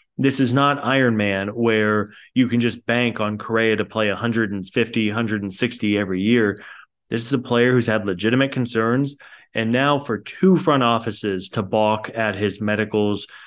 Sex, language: male, English